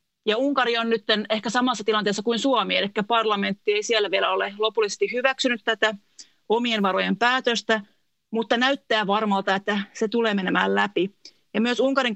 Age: 30-49